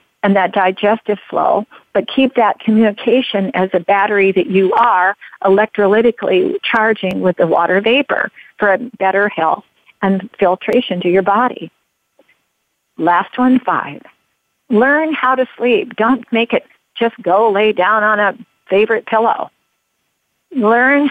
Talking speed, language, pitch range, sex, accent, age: 135 wpm, English, 190-235 Hz, female, American, 50-69